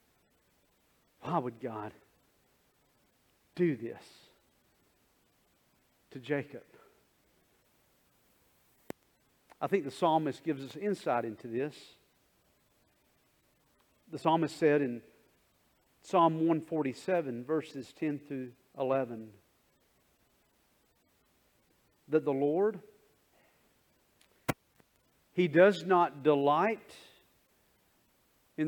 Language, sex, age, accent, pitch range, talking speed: English, male, 50-69, American, 155-235 Hz, 70 wpm